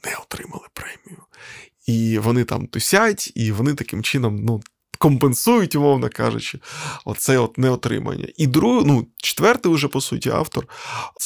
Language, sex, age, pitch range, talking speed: Ukrainian, male, 20-39, 125-160 Hz, 145 wpm